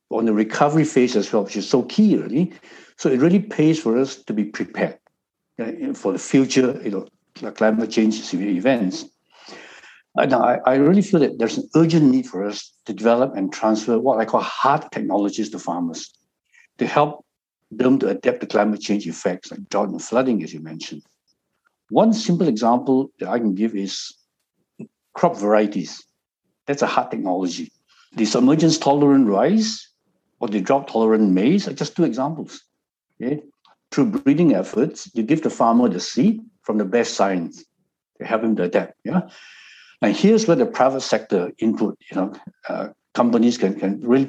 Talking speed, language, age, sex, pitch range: 175 wpm, English, 60-79, male, 110-150 Hz